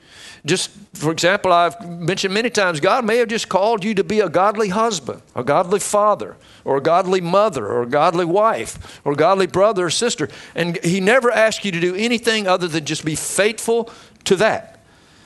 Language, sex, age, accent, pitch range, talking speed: English, male, 50-69, American, 135-190 Hz, 195 wpm